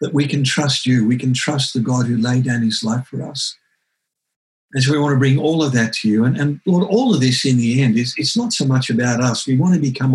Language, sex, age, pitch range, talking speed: English, male, 50-69, 115-145 Hz, 285 wpm